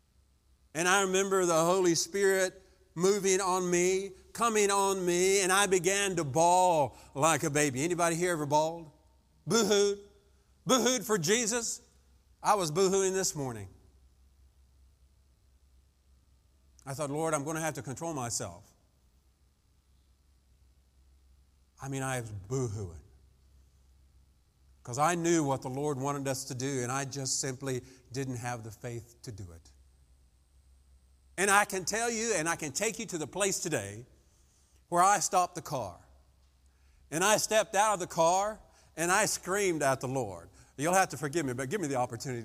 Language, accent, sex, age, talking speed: English, American, male, 50-69, 155 wpm